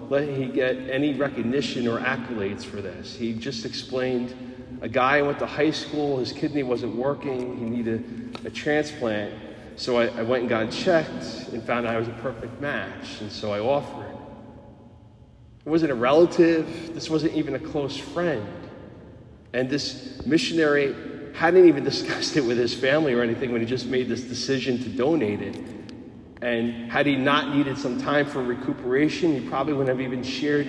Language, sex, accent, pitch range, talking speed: English, male, American, 115-140 Hz, 180 wpm